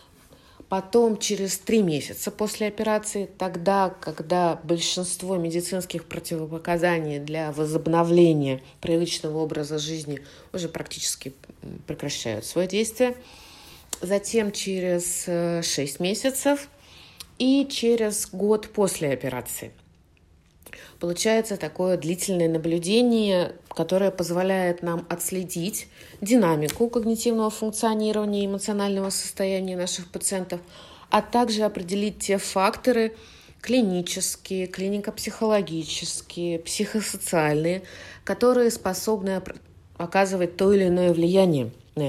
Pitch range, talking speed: 170-210 Hz, 90 wpm